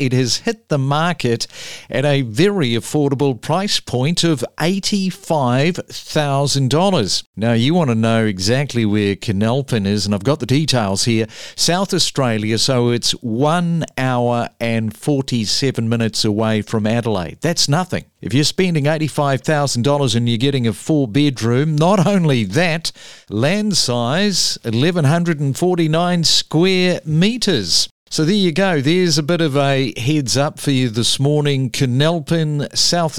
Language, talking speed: English, 135 wpm